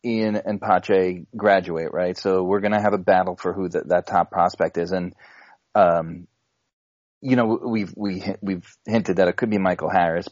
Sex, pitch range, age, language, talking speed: male, 90-110 Hz, 30-49, English, 185 wpm